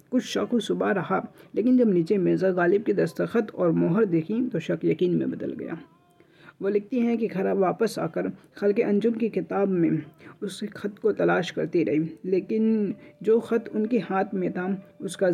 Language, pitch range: Hindi, 170-215 Hz